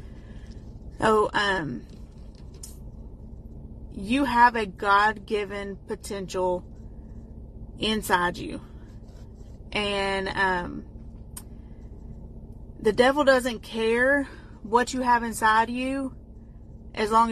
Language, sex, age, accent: English, female, 30-49, American